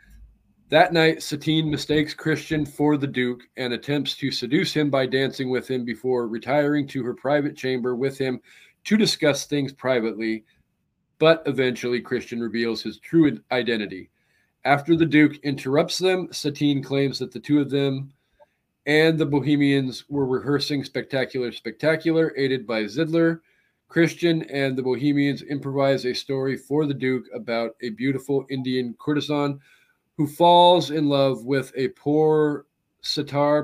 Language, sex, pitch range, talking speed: English, male, 125-150 Hz, 145 wpm